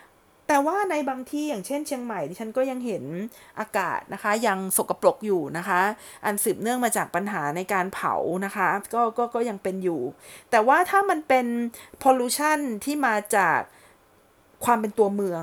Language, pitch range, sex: Thai, 195-255 Hz, female